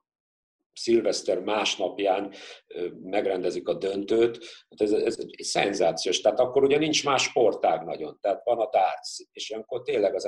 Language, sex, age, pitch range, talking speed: Hungarian, male, 50-69, 290-460 Hz, 135 wpm